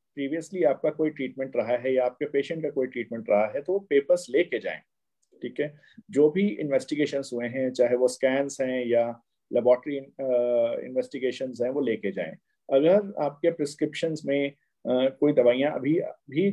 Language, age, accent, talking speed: Hindi, 50-69, native, 165 wpm